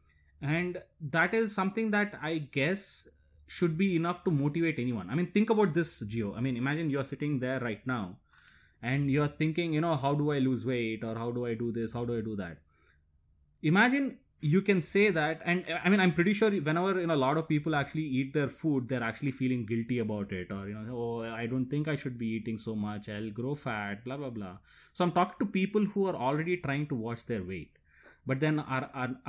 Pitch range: 125-170 Hz